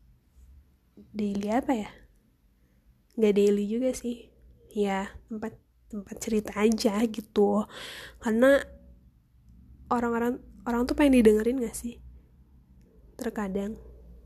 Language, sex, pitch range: Indonesian, female, 210-245 Hz